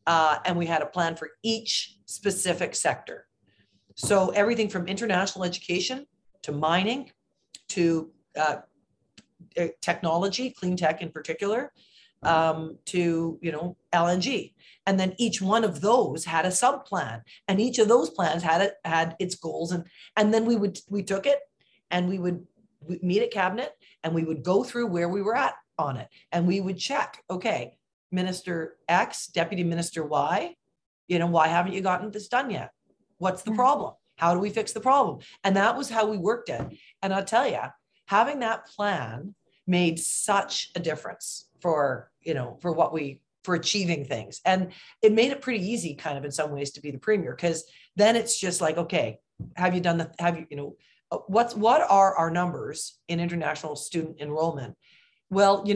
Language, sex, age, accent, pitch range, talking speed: English, female, 40-59, American, 165-210 Hz, 180 wpm